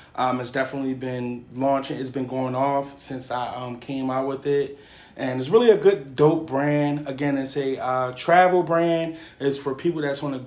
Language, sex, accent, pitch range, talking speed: English, male, American, 125-140 Hz, 200 wpm